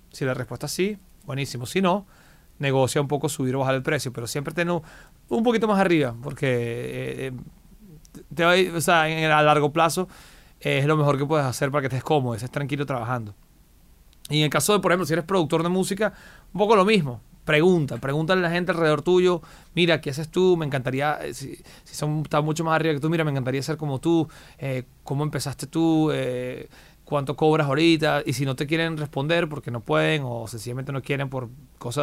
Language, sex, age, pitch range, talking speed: Spanish, male, 30-49, 130-165 Hz, 215 wpm